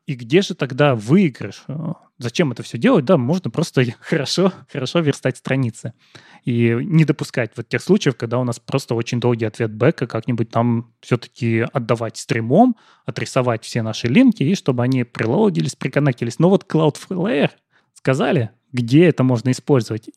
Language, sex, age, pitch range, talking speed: Russian, male, 20-39, 120-170 Hz, 155 wpm